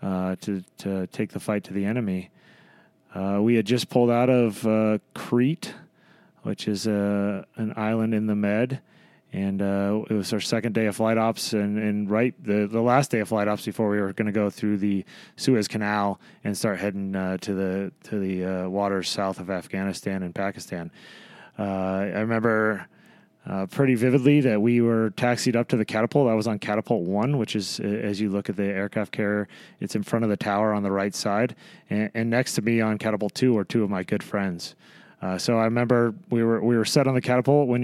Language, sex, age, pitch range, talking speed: English, male, 30-49, 100-120 Hz, 215 wpm